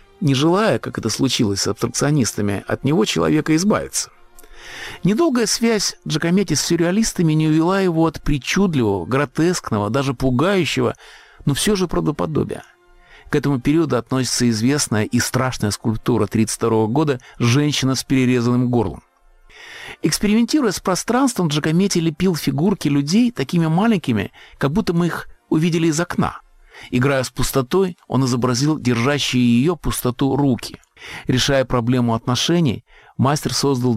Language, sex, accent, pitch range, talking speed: Russian, male, native, 120-170 Hz, 125 wpm